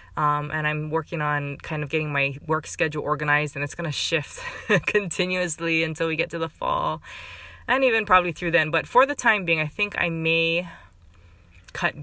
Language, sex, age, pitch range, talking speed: English, female, 20-39, 140-170 Hz, 195 wpm